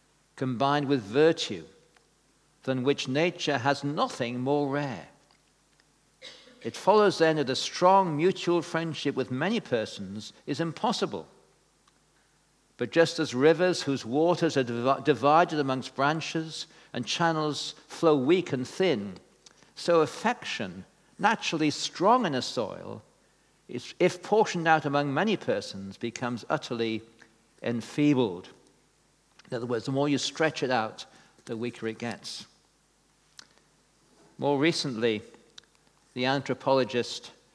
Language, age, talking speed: English, 60-79, 115 wpm